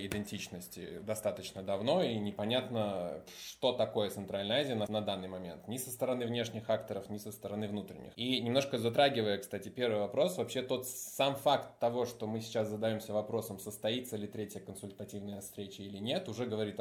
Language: Russian